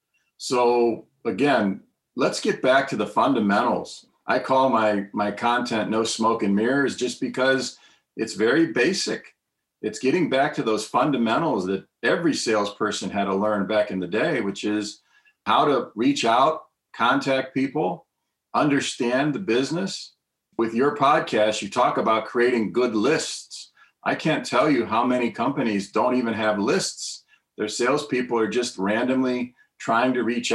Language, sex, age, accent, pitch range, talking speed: English, male, 50-69, American, 110-135 Hz, 150 wpm